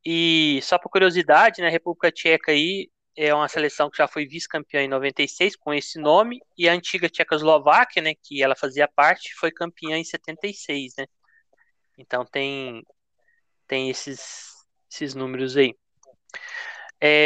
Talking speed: 150 wpm